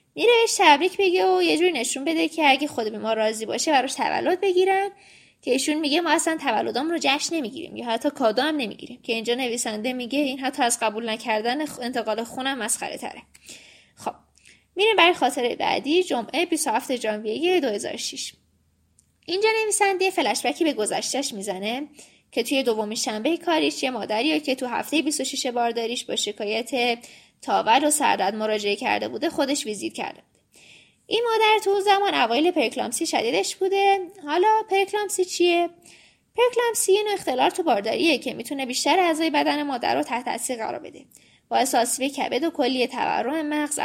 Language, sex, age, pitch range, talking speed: Persian, female, 20-39, 240-355 Hz, 165 wpm